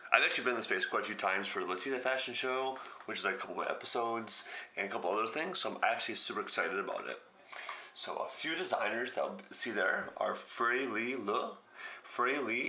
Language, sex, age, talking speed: English, male, 30-49, 230 wpm